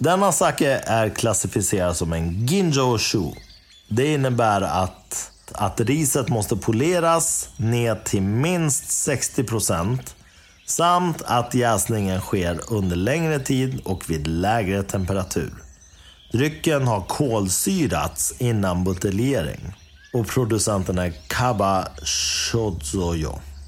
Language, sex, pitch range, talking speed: Swedish, male, 95-140 Hz, 100 wpm